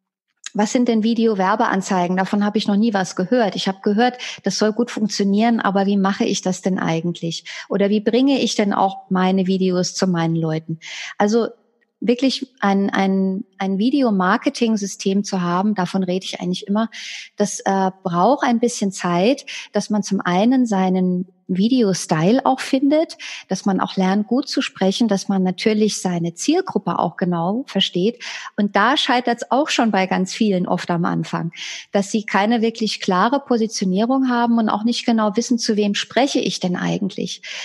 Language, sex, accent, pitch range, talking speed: German, female, German, 190-230 Hz, 170 wpm